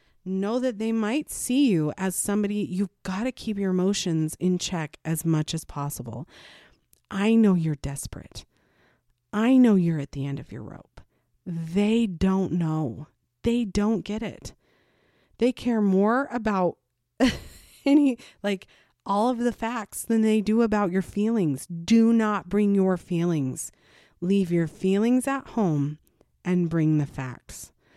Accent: American